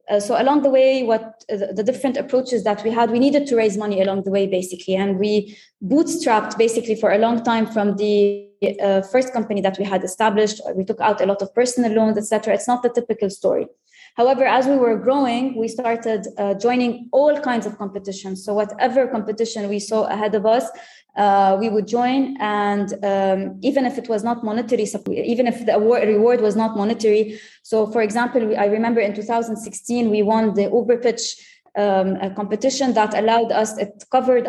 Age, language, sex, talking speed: 20-39, English, female, 200 wpm